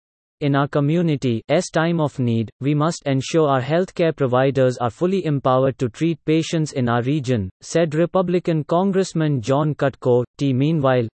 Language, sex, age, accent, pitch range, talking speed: English, male, 30-49, Indian, 130-155 Hz, 160 wpm